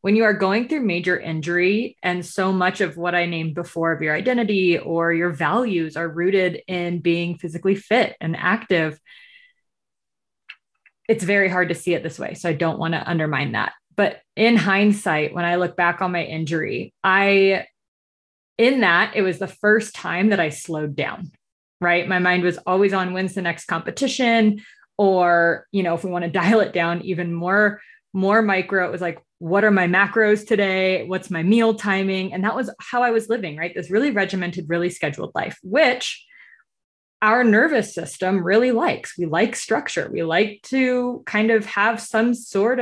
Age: 20-39